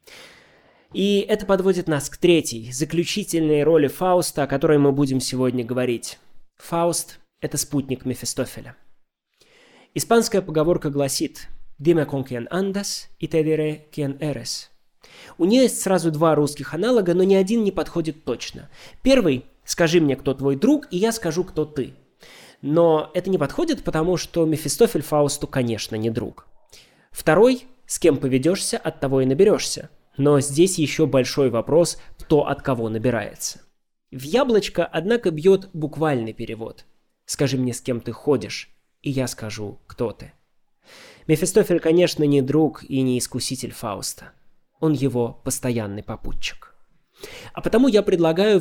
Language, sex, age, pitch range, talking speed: Russian, male, 20-39, 130-175 Hz, 145 wpm